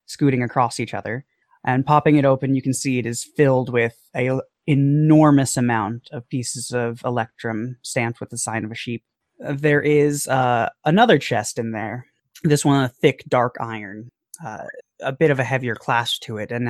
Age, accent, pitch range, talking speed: 20-39, American, 120-145 Hz, 185 wpm